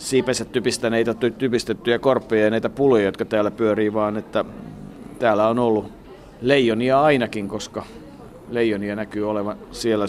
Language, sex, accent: Finnish, male, native